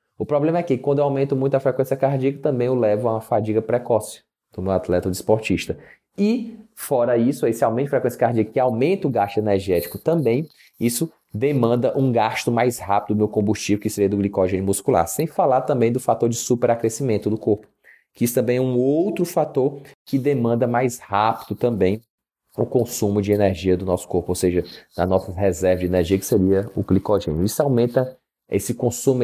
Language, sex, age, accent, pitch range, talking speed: Portuguese, male, 20-39, Brazilian, 100-130 Hz, 195 wpm